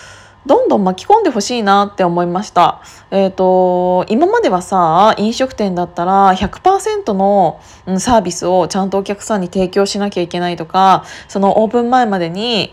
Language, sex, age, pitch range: Japanese, female, 20-39, 180-240 Hz